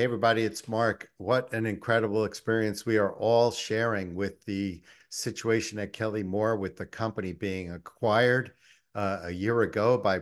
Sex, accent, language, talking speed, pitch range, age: male, American, English, 165 wpm, 95-115 Hz, 50-69